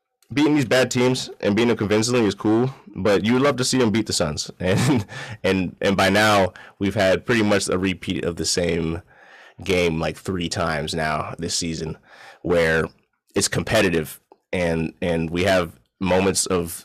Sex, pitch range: male, 85-100 Hz